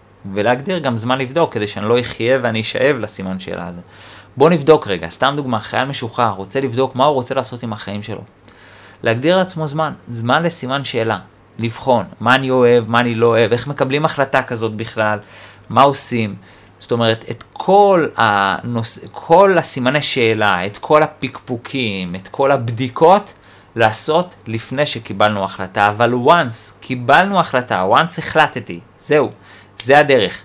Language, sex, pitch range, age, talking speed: Hebrew, male, 100-130 Hz, 30-49, 150 wpm